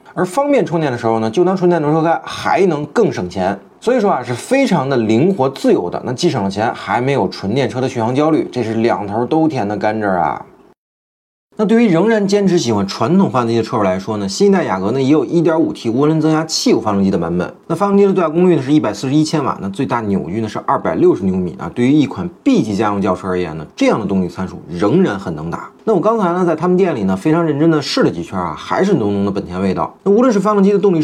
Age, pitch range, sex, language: 30-49, 110-185 Hz, male, Chinese